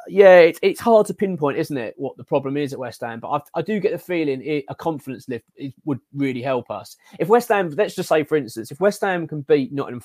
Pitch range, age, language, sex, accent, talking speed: 130-165 Hz, 20-39, English, male, British, 265 wpm